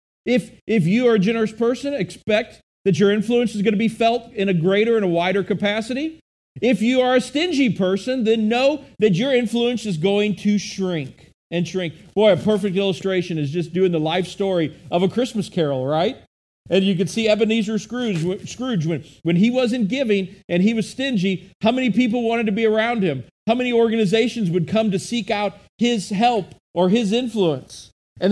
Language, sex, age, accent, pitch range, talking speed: English, male, 40-59, American, 170-230 Hz, 195 wpm